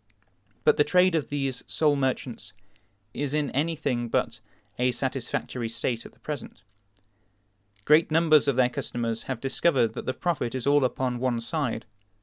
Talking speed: 155 wpm